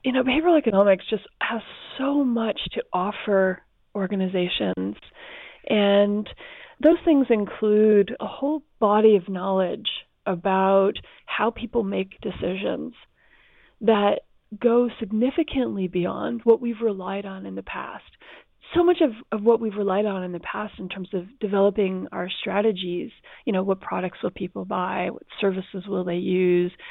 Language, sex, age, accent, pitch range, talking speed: English, female, 30-49, American, 190-240 Hz, 145 wpm